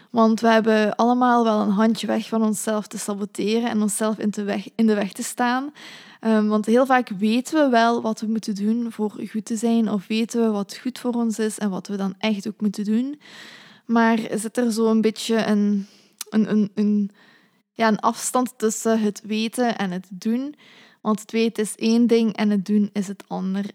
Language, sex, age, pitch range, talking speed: Dutch, female, 20-39, 210-230 Hz, 200 wpm